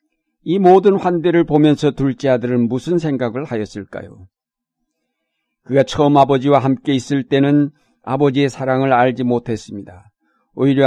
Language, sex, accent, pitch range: Korean, male, native, 125-155 Hz